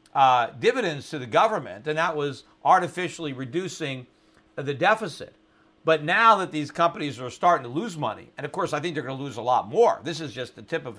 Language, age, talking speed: English, 50-69, 220 wpm